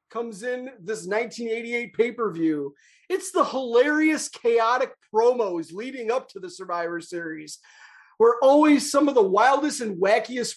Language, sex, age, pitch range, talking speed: English, male, 30-49, 220-315 Hz, 135 wpm